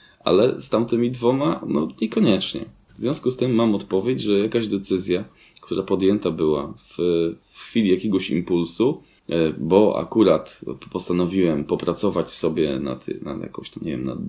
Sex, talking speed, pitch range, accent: male, 145 wpm, 80-110 Hz, native